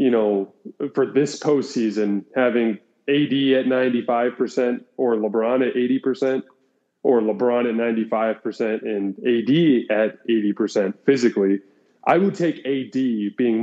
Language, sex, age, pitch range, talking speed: English, male, 20-39, 110-135 Hz, 135 wpm